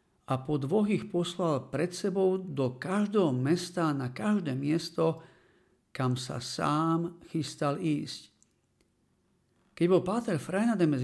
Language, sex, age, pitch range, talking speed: Slovak, male, 50-69, 135-175 Hz, 120 wpm